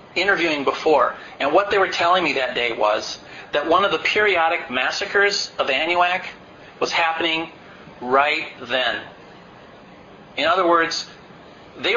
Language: English